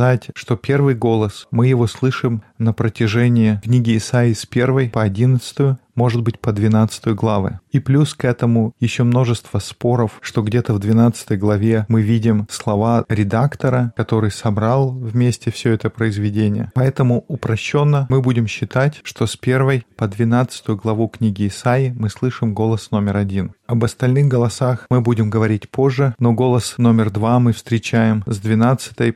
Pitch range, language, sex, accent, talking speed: 110-125 Hz, Russian, male, native, 150 wpm